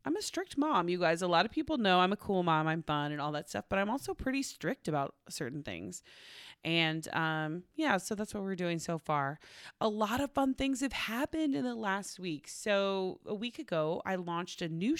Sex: female